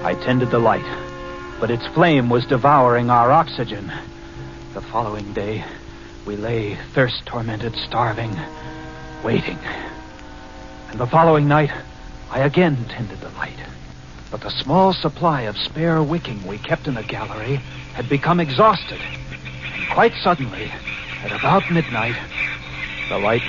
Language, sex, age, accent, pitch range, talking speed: English, male, 60-79, American, 105-160 Hz, 130 wpm